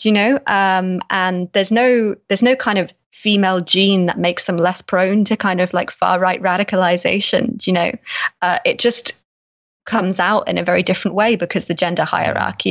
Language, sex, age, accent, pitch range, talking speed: English, female, 20-39, British, 180-220 Hz, 200 wpm